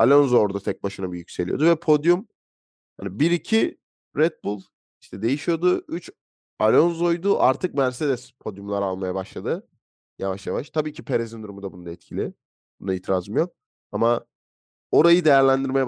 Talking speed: 135 wpm